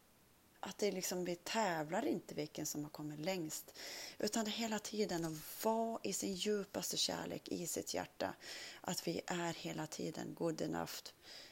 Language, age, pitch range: Swedish, 30-49, 160-195 Hz